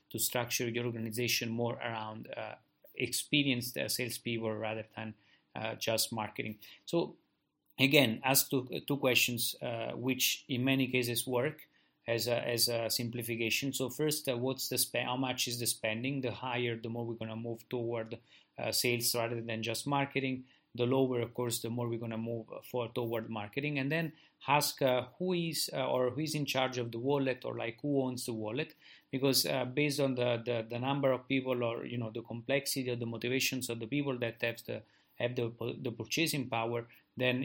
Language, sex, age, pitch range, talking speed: English, male, 30-49, 115-130 Hz, 195 wpm